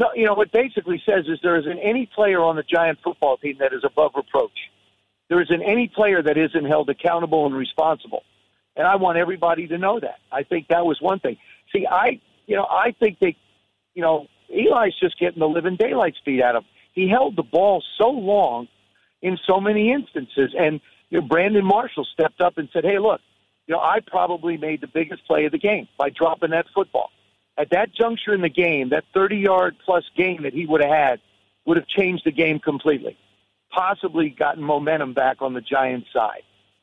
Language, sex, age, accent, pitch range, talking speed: English, male, 50-69, American, 145-190 Hz, 205 wpm